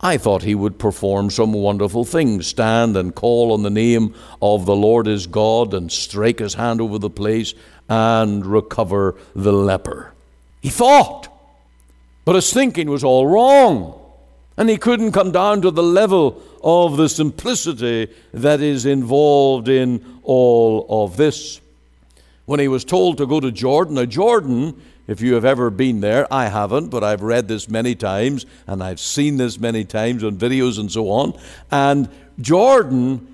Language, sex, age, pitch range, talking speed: English, male, 60-79, 100-135 Hz, 165 wpm